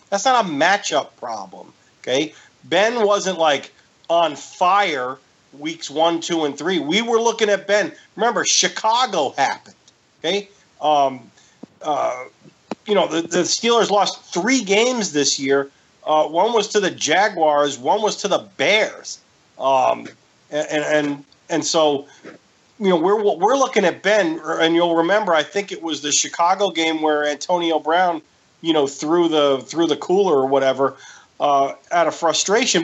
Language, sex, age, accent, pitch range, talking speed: English, male, 40-59, American, 155-220 Hz, 155 wpm